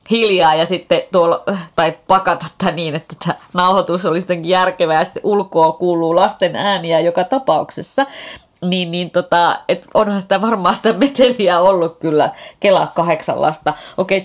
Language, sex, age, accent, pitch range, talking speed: Finnish, female, 30-49, native, 150-190 Hz, 145 wpm